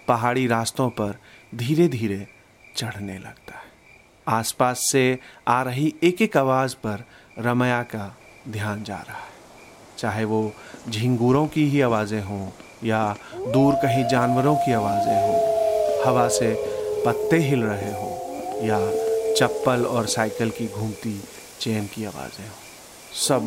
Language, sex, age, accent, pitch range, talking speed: Hindi, male, 30-49, native, 110-145 Hz, 135 wpm